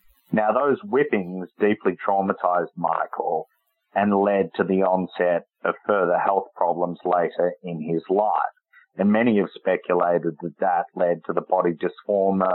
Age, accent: 30-49, Australian